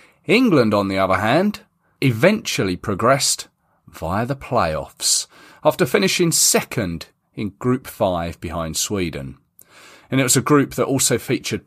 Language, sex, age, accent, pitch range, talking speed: English, male, 30-49, British, 90-140 Hz, 135 wpm